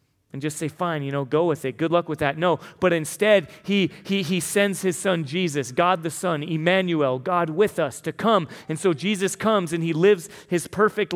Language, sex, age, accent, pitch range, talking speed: English, male, 30-49, American, 155-205 Hz, 220 wpm